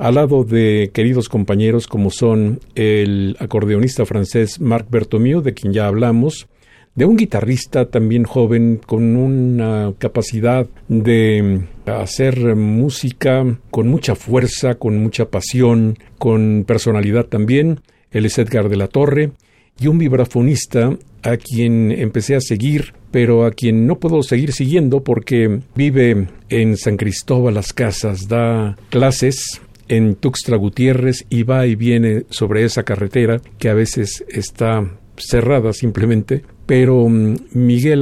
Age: 50-69